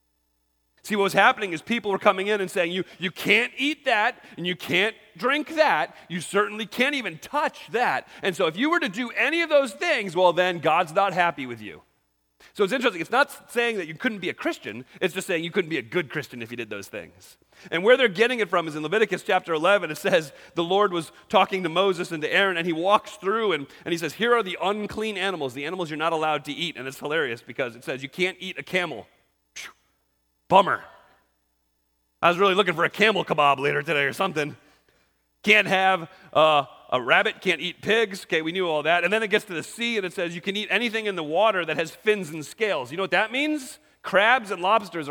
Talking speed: 240 wpm